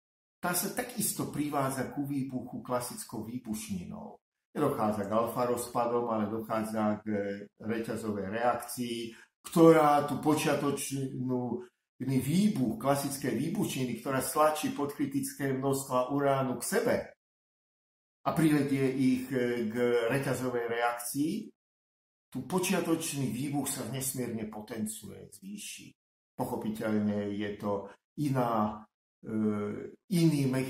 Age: 50-69